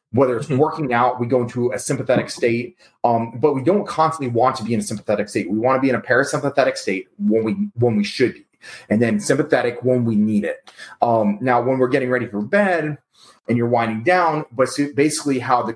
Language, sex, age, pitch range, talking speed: English, male, 30-49, 115-145 Hz, 230 wpm